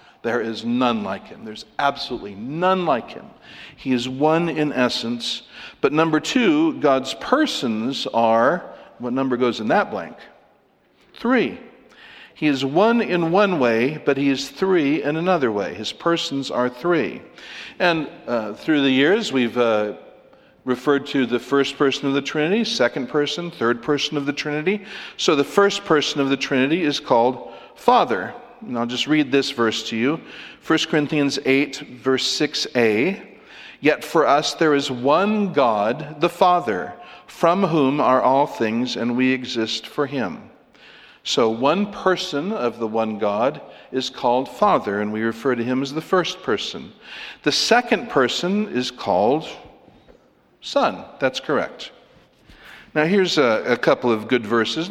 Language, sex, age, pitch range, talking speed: English, male, 60-79, 120-170 Hz, 160 wpm